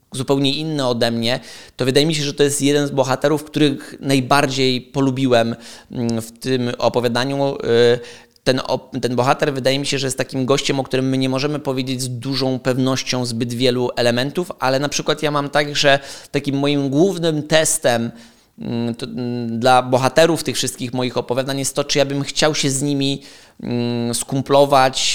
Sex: male